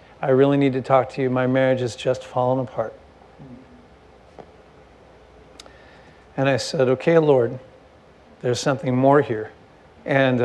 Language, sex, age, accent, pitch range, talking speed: English, male, 50-69, American, 125-150 Hz, 130 wpm